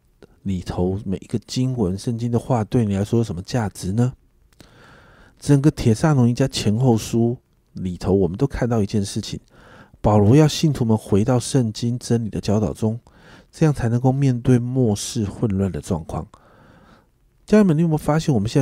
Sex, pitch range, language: male, 100-130 Hz, Chinese